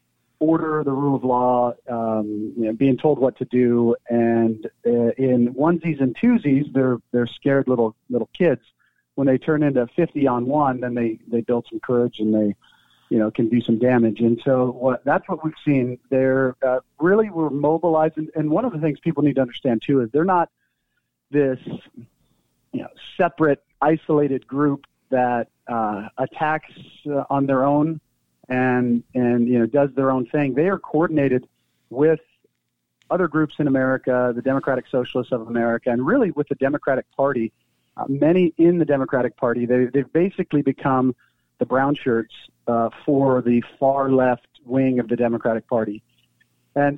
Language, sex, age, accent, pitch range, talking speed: English, male, 40-59, American, 120-150 Hz, 170 wpm